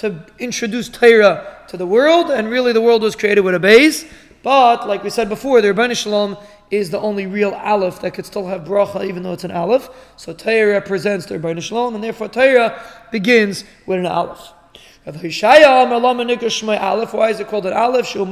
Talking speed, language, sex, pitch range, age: 190 wpm, English, male, 200-235 Hz, 20-39